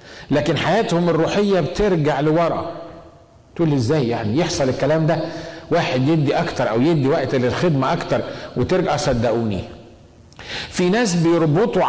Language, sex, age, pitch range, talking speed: Arabic, male, 50-69, 125-165 Hz, 125 wpm